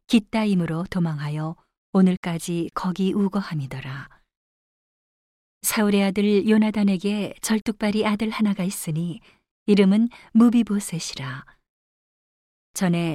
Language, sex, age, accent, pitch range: Korean, female, 40-59, native, 165-205 Hz